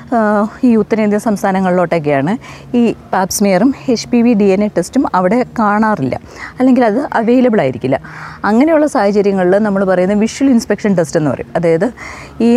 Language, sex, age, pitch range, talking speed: Malayalam, female, 30-49, 175-230 Hz, 140 wpm